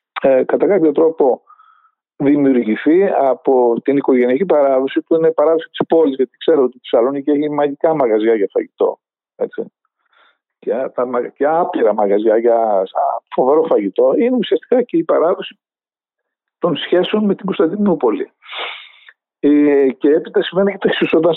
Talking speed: 130 wpm